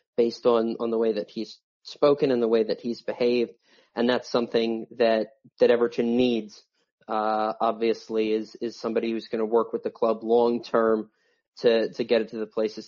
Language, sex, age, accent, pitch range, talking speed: English, male, 30-49, American, 115-130 Hz, 195 wpm